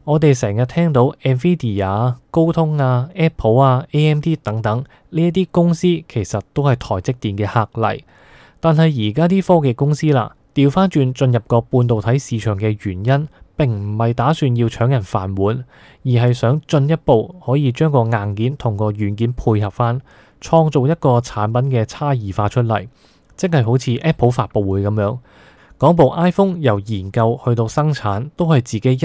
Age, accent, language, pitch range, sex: 20-39, native, Chinese, 110-140 Hz, male